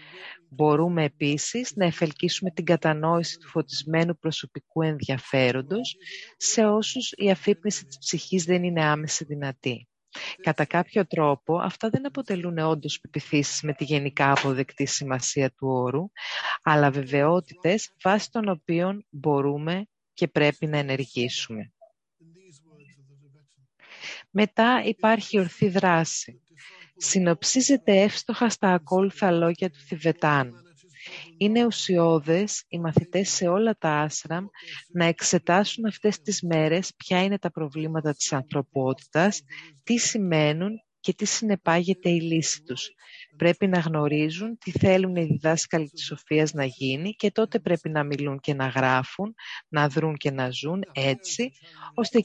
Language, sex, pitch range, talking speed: English, female, 150-190 Hz, 125 wpm